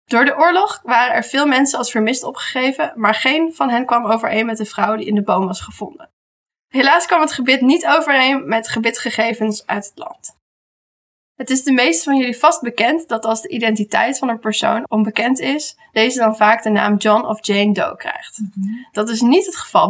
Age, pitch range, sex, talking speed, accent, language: 20-39, 215-265 Hz, female, 205 wpm, Dutch, Dutch